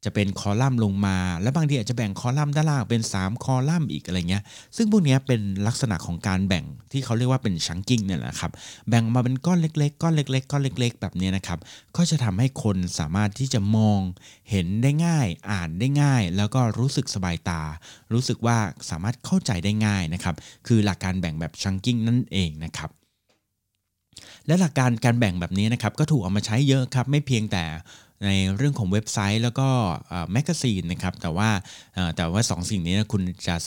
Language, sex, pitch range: Thai, male, 95-125 Hz